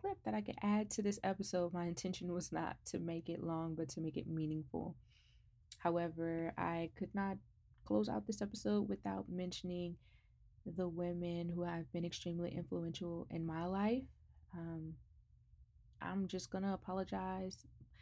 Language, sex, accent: English, female, American